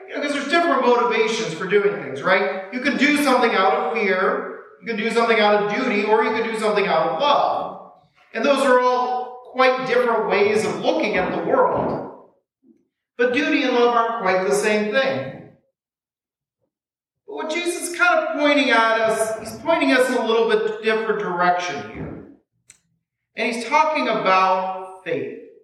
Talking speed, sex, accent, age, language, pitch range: 180 wpm, male, American, 40-59, English, 205-280 Hz